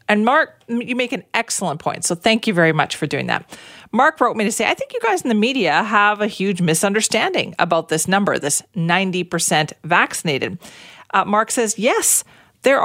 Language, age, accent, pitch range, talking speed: English, 40-59, American, 160-215 Hz, 195 wpm